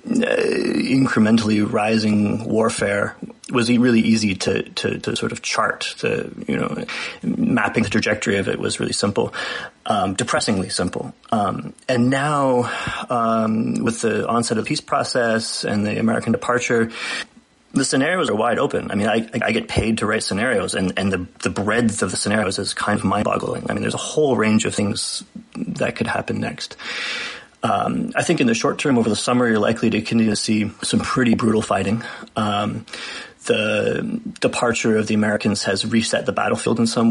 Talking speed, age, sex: 185 wpm, 30-49, male